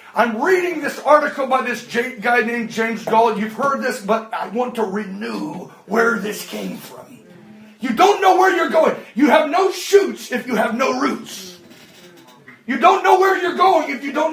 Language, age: English, 40-59